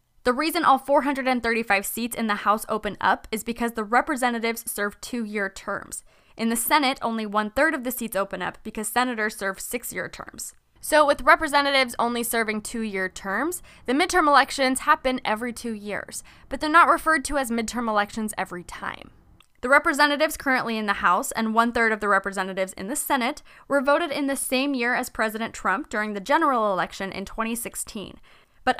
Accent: American